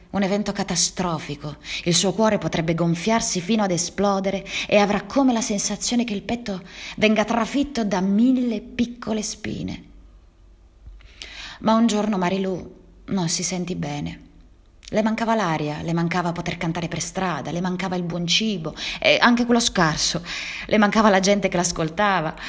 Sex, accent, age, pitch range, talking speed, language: female, native, 20-39, 150-200 Hz, 150 wpm, Italian